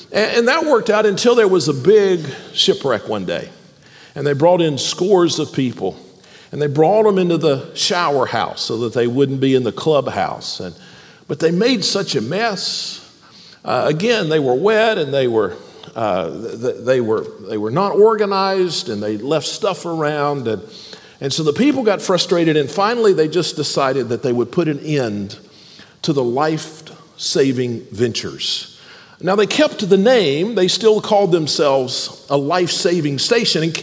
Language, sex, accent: English, male, American